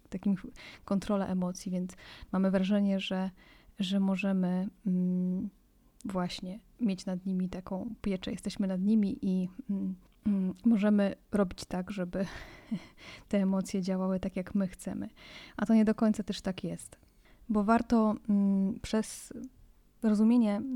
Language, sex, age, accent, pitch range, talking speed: Polish, female, 20-39, native, 190-215 Hz, 120 wpm